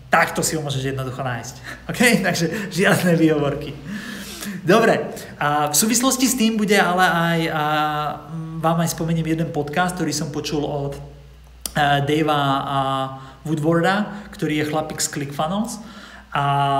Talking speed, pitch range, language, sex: 125 wpm, 140-170 Hz, Slovak, male